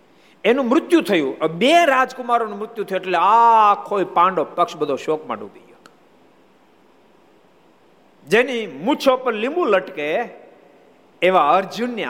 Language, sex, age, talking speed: Gujarati, male, 50-69, 115 wpm